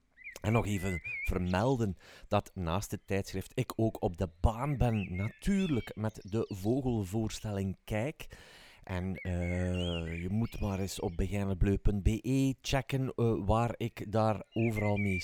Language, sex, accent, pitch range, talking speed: Dutch, male, Swiss, 95-115 Hz, 135 wpm